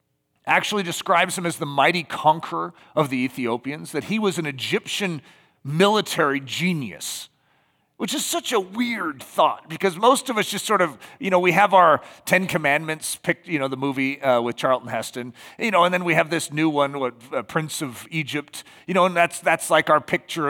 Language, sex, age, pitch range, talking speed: English, male, 40-59, 145-205 Hz, 200 wpm